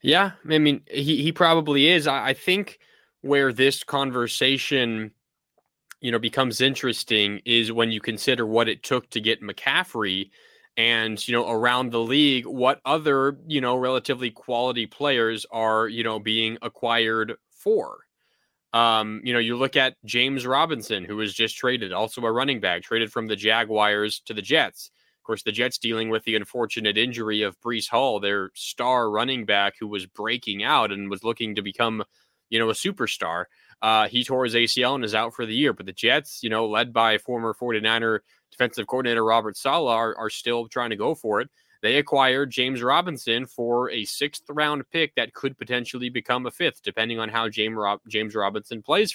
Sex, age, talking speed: male, 20-39, 180 wpm